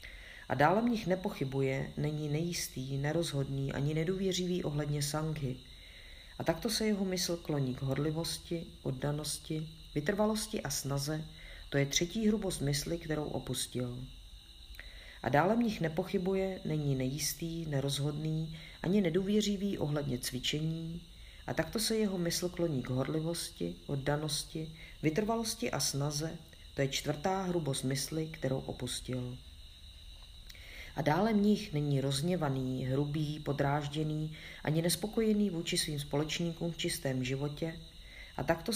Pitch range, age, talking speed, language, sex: 130-170 Hz, 40-59, 120 wpm, Czech, female